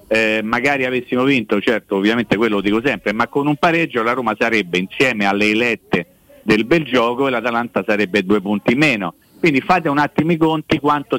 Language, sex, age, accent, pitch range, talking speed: Italian, male, 50-69, native, 110-160 Hz, 195 wpm